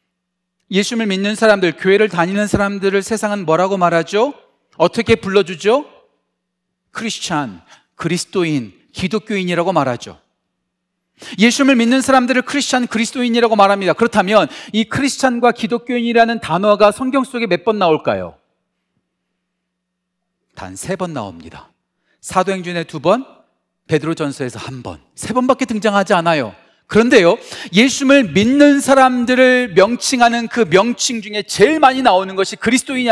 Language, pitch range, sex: Korean, 195-265 Hz, male